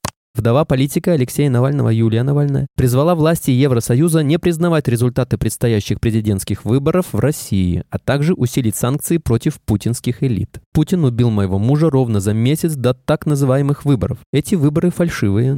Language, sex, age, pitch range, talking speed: Russian, male, 20-39, 105-150 Hz, 145 wpm